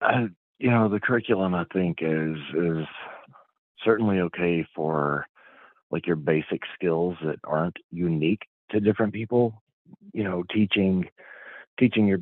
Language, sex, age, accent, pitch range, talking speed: English, male, 40-59, American, 80-95 Hz, 135 wpm